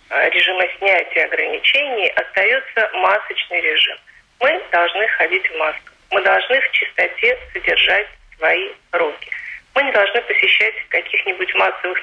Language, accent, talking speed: Russian, native, 120 wpm